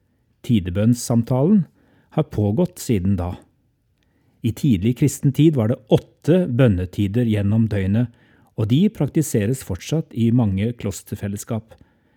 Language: English